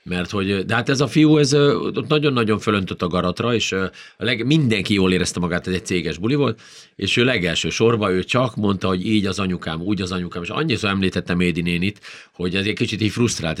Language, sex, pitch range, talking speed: Hungarian, male, 90-115 Hz, 225 wpm